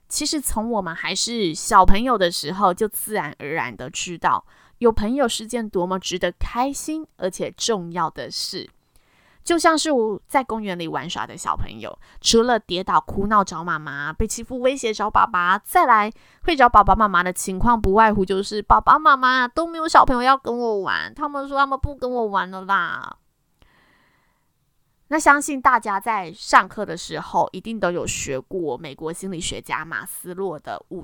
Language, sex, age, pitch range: Chinese, female, 20-39, 180-250 Hz